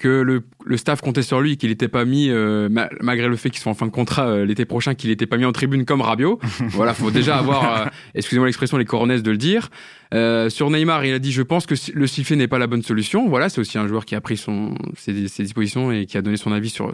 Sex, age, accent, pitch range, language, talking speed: male, 20-39, French, 110-140 Hz, French, 295 wpm